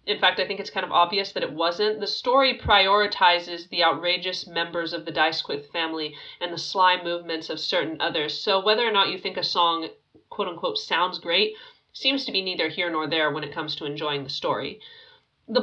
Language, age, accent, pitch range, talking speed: English, 30-49, American, 170-250 Hz, 205 wpm